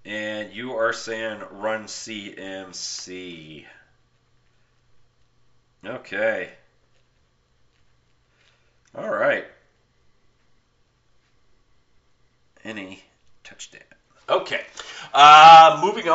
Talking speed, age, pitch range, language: 50 wpm, 40-59, 105-155 Hz, English